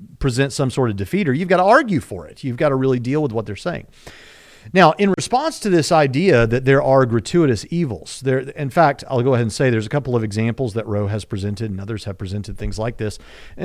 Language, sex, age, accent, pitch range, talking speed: English, male, 40-59, American, 105-135 Hz, 245 wpm